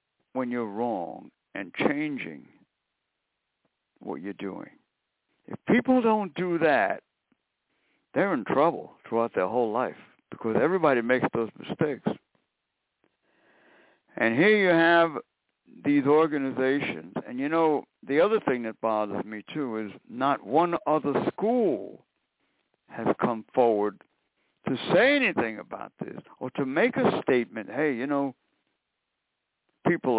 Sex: male